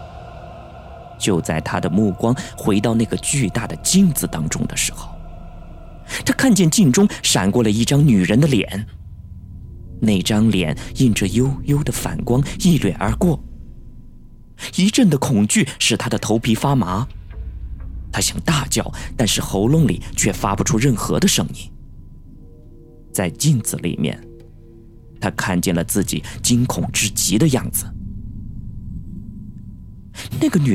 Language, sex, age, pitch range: Chinese, male, 20-39, 85-125 Hz